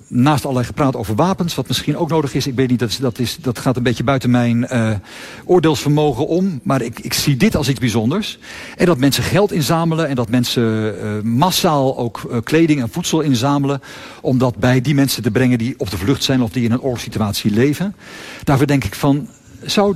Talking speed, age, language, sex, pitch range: 210 wpm, 50-69, Dutch, male, 115-160 Hz